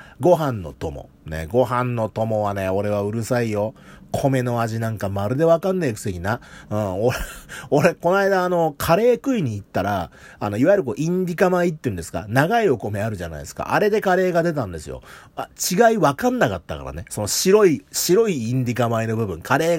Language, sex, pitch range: Japanese, male, 100-165 Hz